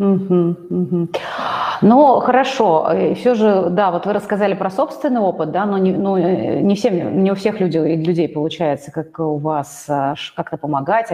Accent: native